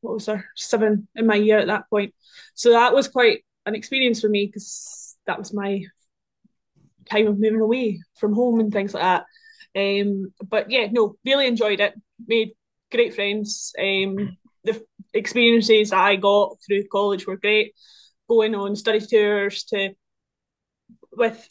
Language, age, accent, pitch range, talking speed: English, 20-39, British, 205-230 Hz, 160 wpm